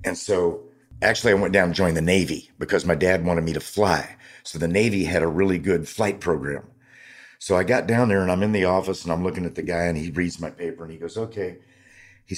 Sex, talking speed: male, 250 wpm